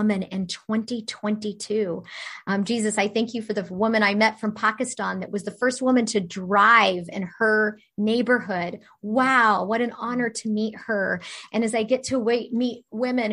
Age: 30-49